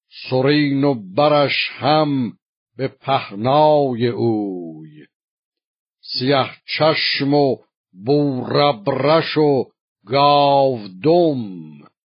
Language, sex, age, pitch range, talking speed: Persian, male, 60-79, 125-145 Hz, 70 wpm